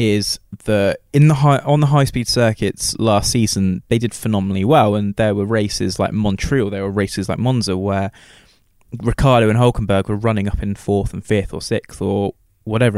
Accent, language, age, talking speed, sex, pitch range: British, English, 20-39, 190 wpm, male, 100-120 Hz